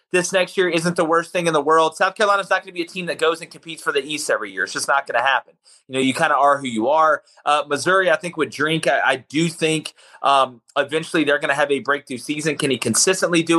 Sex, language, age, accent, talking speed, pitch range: male, English, 30-49, American, 290 wpm, 140-170 Hz